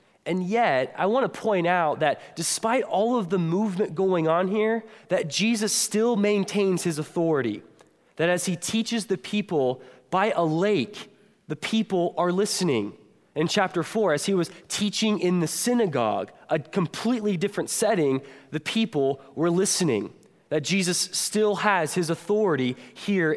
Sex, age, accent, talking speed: male, 20-39, American, 155 wpm